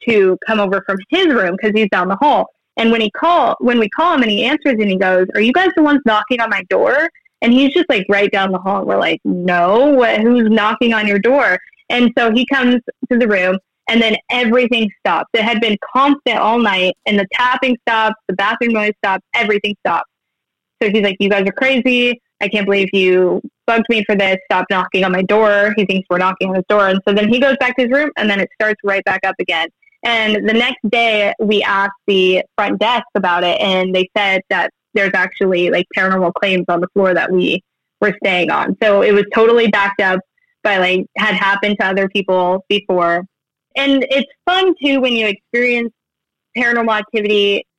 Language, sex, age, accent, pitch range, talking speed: English, female, 10-29, American, 195-240 Hz, 220 wpm